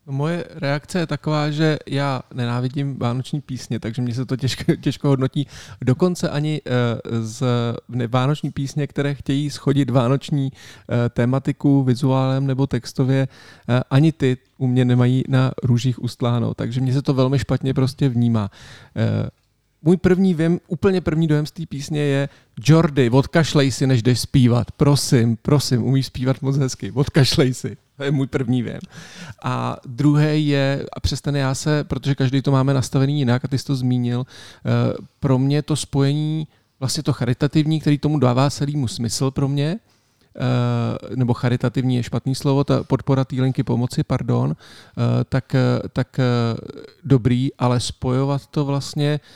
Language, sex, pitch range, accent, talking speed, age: Czech, male, 120-140 Hz, native, 150 wpm, 40-59